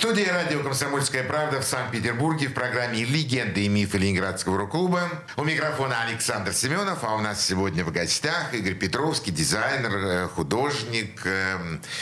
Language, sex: Russian, male